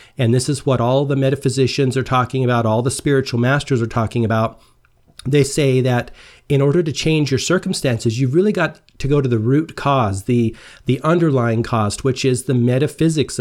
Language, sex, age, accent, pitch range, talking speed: English, male, 40-59, American, 120-145 Hz, 195 wpm